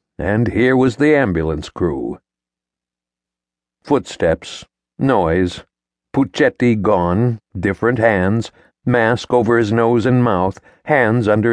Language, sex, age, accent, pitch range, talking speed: English, male, 60-79, American, 85-115 Hz, 105 wpm